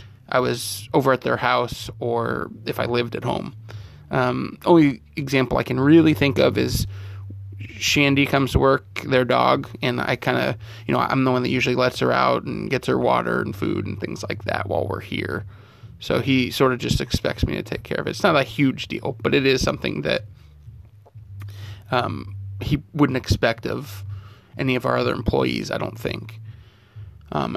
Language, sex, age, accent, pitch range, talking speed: English, male, 20-39, American, 105-130 Hz, 195 wpm